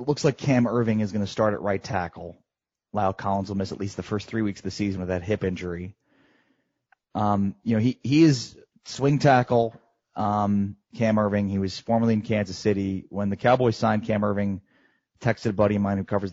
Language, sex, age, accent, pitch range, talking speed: English, male, 30-49, American, 100-130 Hz, 220 wpm